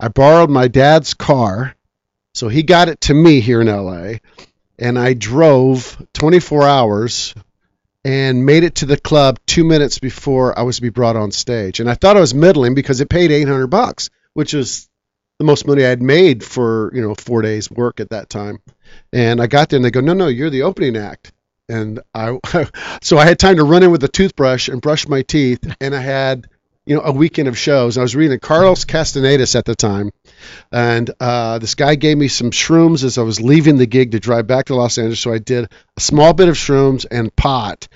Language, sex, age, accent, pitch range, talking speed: English, male, 50-69, American, 115-145 Hz, 220 wpm